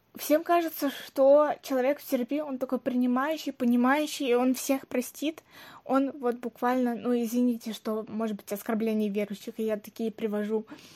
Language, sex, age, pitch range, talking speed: Russian, female, 20-39, 230-275 Hz, 155 wpm